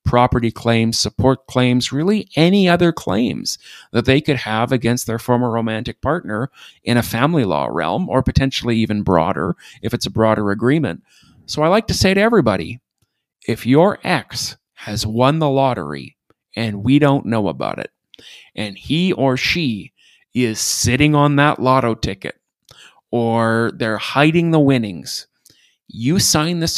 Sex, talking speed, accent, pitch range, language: male, 155 wpm, American, 110-135 Hz, English